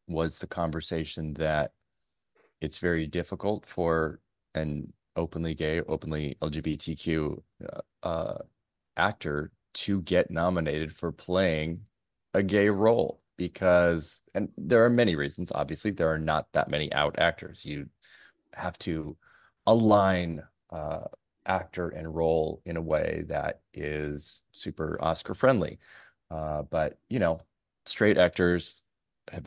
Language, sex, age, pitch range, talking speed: English, male, 30-49, 75-90 Hz, 120 wpm